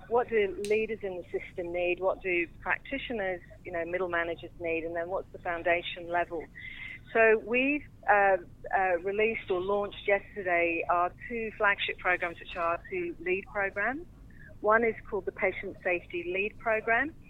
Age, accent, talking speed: 40-59, British, 160 wpm